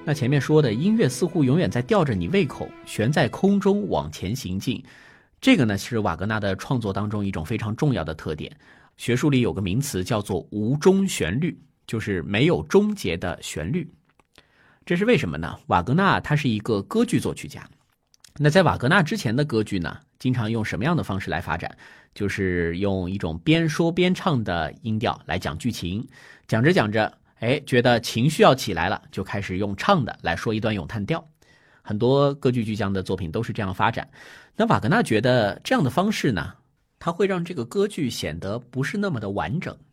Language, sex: Chinese, male